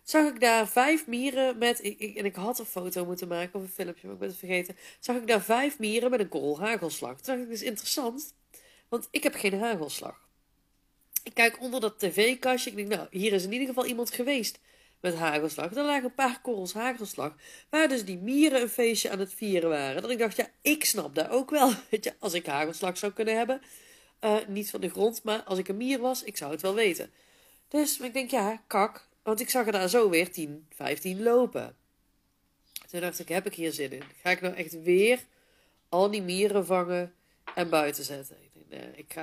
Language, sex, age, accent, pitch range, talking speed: Dutch, female, 40-59, Dutch, 185-250 Hz, 220 wpm